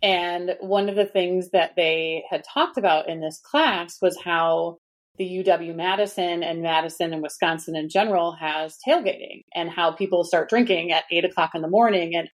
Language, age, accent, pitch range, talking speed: English, 30-49, American, 170-200 Hz, 185 wpm